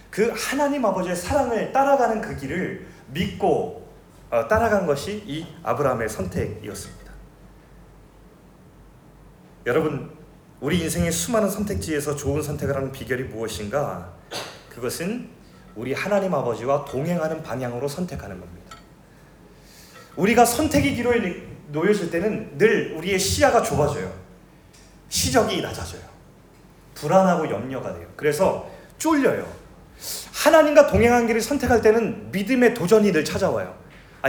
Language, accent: Korean, native